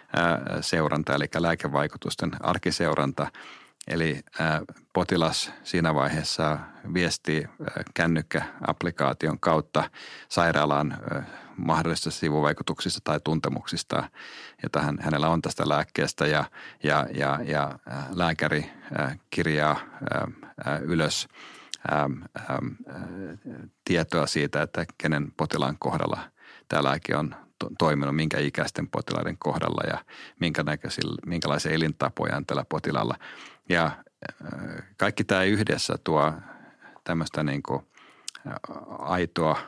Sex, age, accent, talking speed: male, 30-49, native, 85 wpm